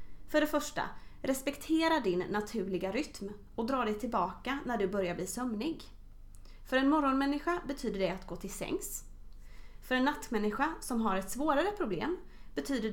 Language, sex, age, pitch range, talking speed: Swedish, female, 30-49, 195-265 Hz, 160 wpm